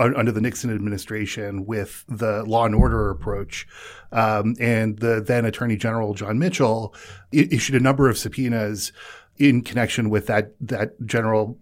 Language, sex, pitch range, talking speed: English, male, 105-125 Hz, 150 wpm